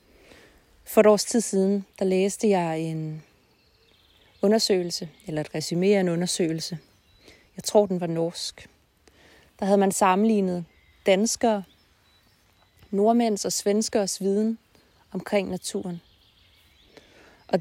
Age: 30-49